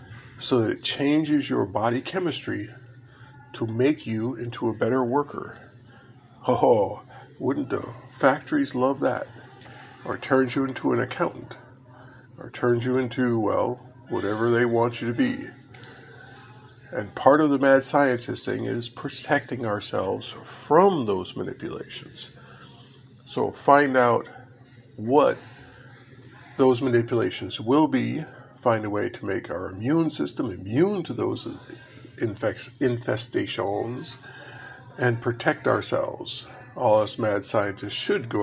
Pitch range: 120-130 Hz